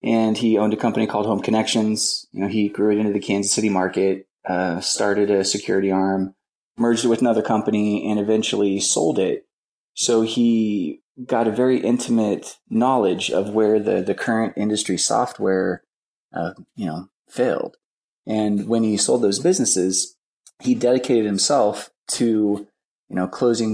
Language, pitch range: English, 100-115 Hz